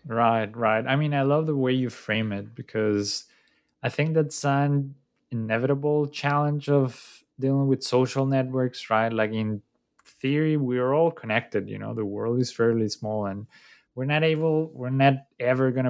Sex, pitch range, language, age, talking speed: male, 105-130 Hz, English, 20-39, 175 wpm